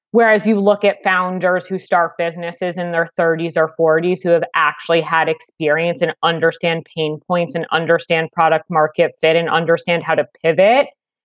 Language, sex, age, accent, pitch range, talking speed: English, female, 30-49, American, 165-215 Hz, 170 wpm